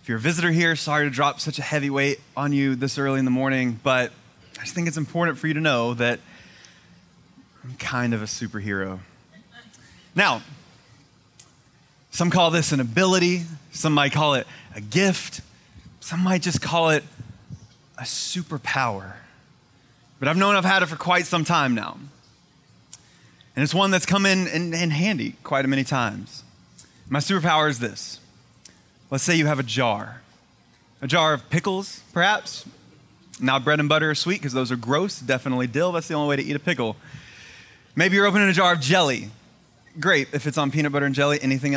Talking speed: 185 wpm